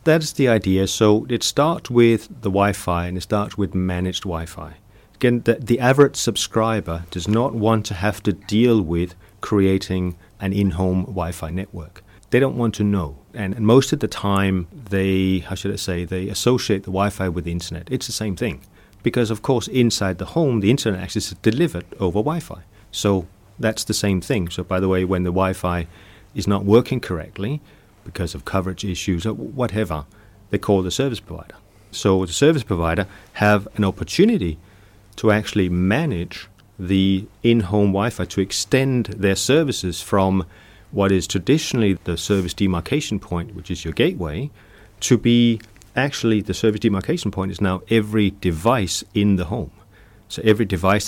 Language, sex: English, male